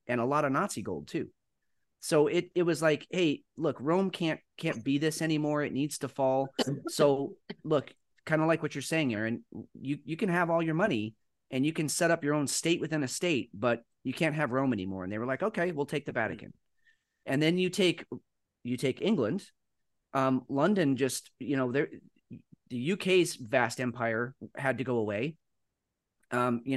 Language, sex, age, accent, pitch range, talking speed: English, male, 30-49, American, 125-160 Hz, 195 wpm